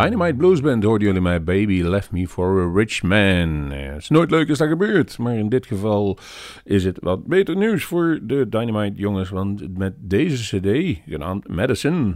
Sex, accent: male, Dutch